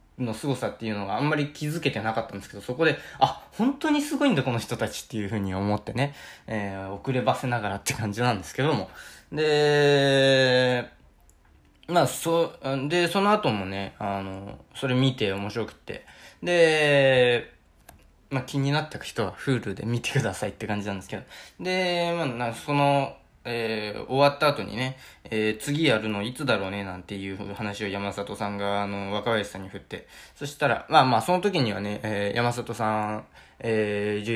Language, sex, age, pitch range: Japanese, male, 20-39, 105-145 Hz